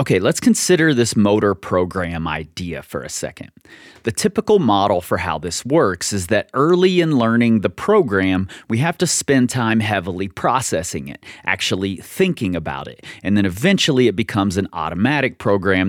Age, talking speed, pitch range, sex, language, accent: 30-49, 165 wpm, 95-140 Hz, male, English, American